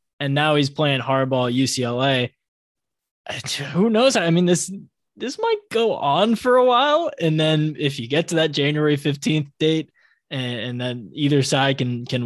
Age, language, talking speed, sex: 20-39, English, 170 wpm, male